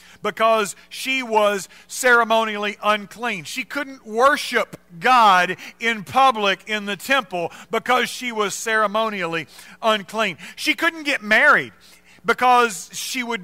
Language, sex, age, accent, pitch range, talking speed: English, male, 40-59, American, 155-240 Hz, 115 wpm